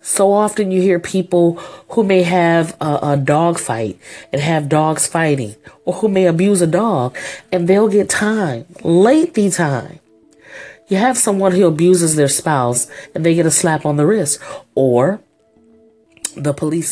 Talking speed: 165 wpm